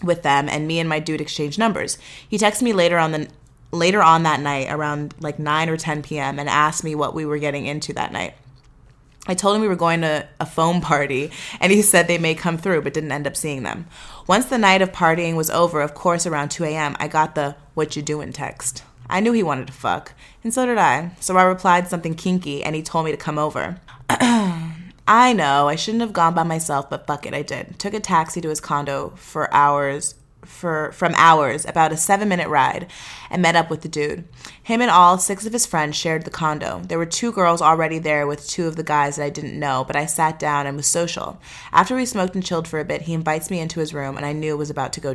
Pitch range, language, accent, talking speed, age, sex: 145-175 Hz, English, American, 250 wpm, 20-39, female